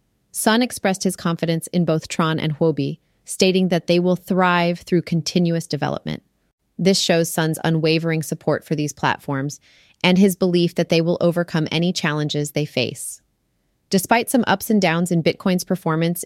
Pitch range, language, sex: 160-195 Hz, English, female